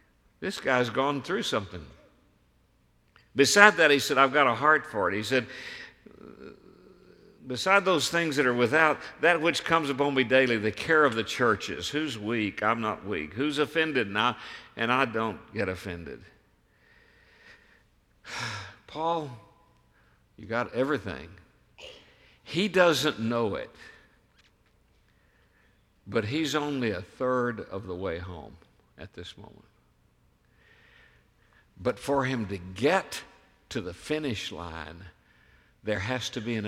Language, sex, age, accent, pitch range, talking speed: English, male, 60-79, American, 105-155 Hz, 135 wpm